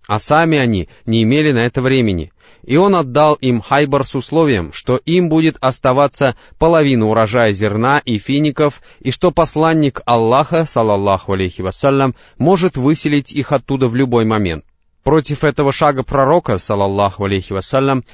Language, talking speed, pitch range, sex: Russian, 150 wpm, 110-150 Hz, male